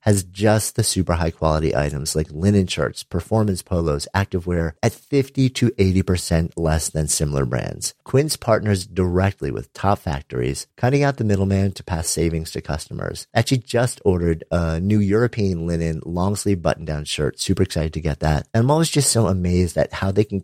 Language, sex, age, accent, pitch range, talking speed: English, male, 50-69, American, 85-110 Hz, 175 wpm